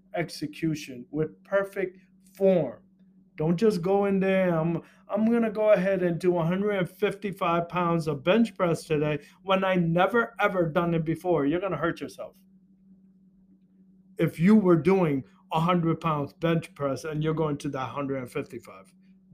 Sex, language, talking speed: male, English, 145 wpm